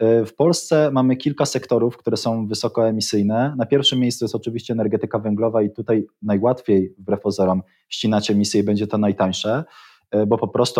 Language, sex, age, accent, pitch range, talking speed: Polish, male, 20-39, native, 105-120 Hz, 160 wpm